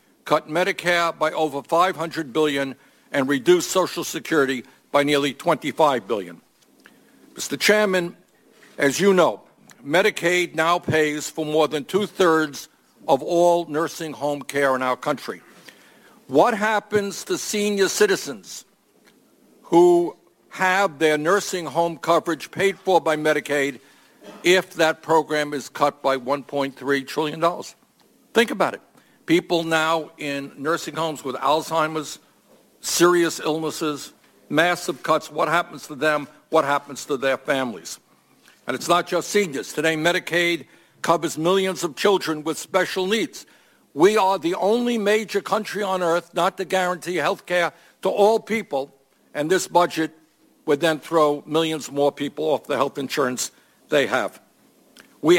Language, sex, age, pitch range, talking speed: English, male, 60-79, 150-185 Hz, 135 wpm